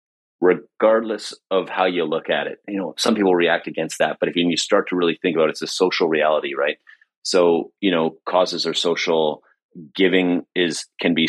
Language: English